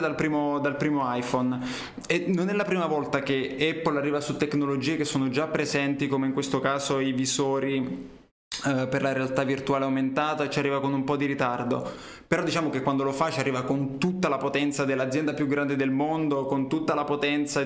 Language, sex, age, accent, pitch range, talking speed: Italian, male, 20-39, native, 135-155 Hz, 205 wpm